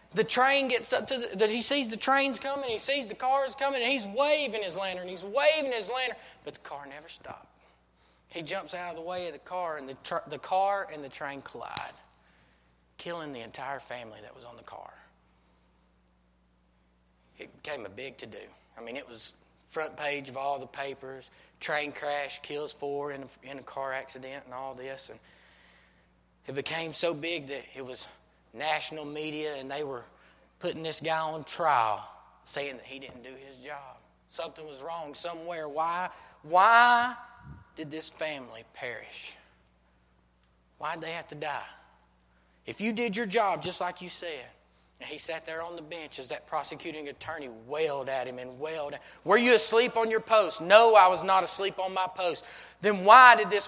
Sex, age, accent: male, 20-39, American